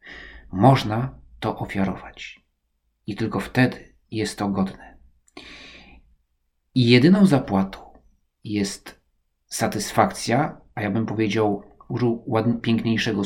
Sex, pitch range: male, 95-130 Hz